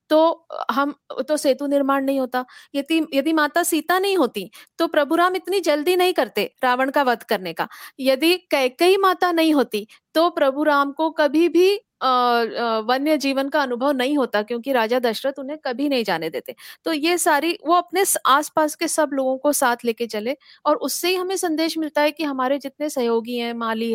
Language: Hindi